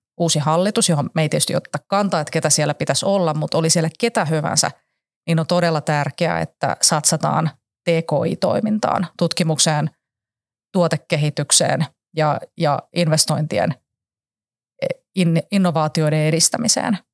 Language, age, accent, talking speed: Finnish, 30-49, native, 115 wpm